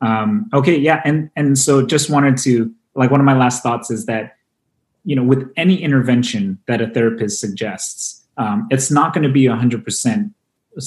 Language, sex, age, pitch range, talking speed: English, male, 30-49, 115-140 Hz, 180 wpm